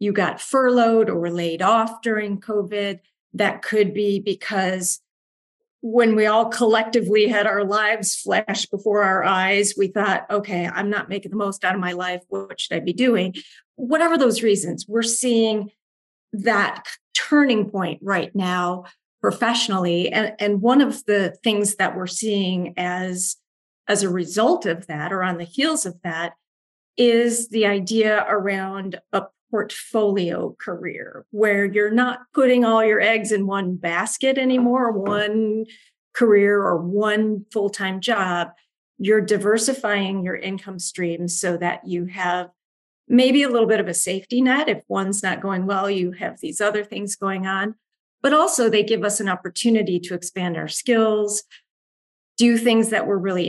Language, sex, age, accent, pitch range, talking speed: English, female, 40-59, American, 185-225 Hz, 160 wpm